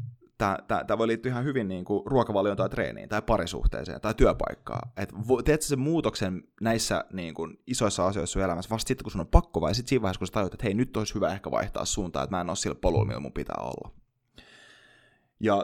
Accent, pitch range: native, 95-120 Hz